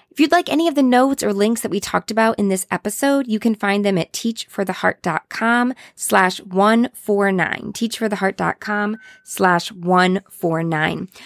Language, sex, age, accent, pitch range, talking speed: English, female, 20-39, American, 180-220 Hz, 145 wpm